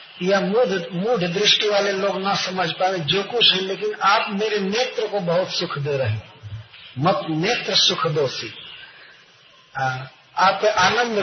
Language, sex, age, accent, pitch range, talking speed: Hindi, male, 50-69, native, 150-205 Hz, 130 wpm